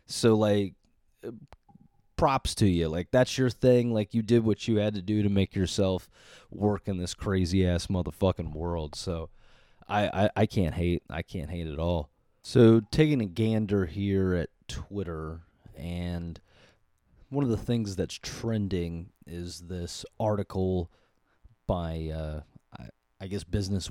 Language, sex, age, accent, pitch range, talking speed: English, male, 30-49, American, 85-115 Hz, 155 wpm